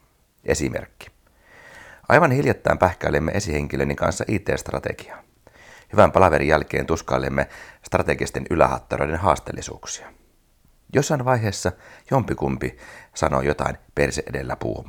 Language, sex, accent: Finnish, male, native